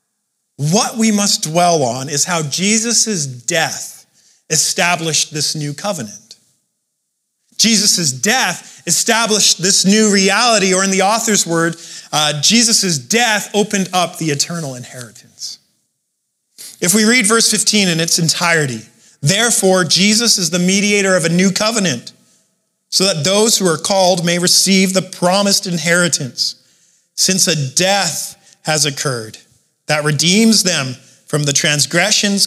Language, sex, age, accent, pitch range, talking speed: English, male, 40-59, American, 165-225 Hz, 130 wpm